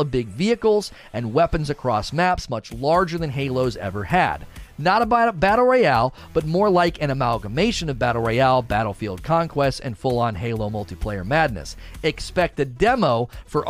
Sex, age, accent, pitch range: male, 40-59, American, 130-180 Hz